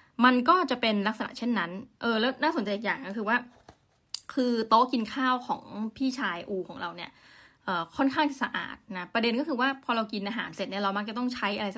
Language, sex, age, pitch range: Thai, female, 20-39, 200-255 Hz